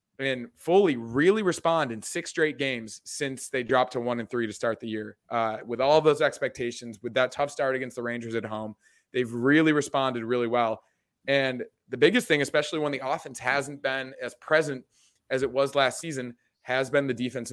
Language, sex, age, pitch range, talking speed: English, male, 20-39, 120-145 Hz, 200 wpm